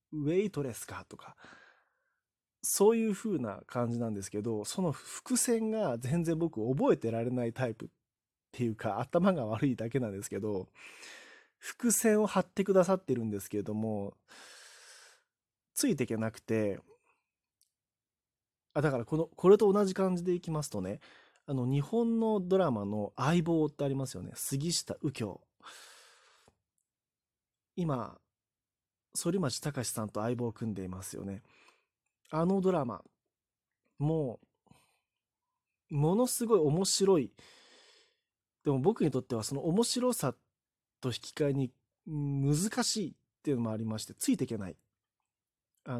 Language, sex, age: Japanese, male, 20-39